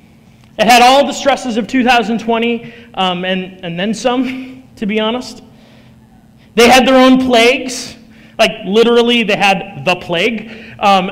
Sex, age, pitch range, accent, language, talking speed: male, 30-49, 195-245 Hz, American, English, 145 wpm